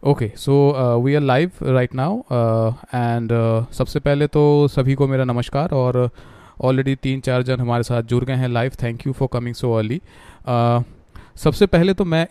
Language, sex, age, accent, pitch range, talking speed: Hindi, male, 30-49, native, 120-140 Hz, 180 wpm